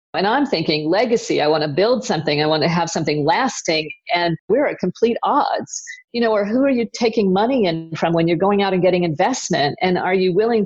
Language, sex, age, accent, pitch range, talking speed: English, female, 50-69, American, 175-220 Hz, 230 wpm